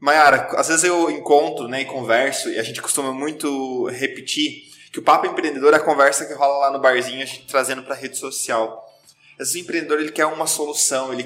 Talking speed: 225 wpm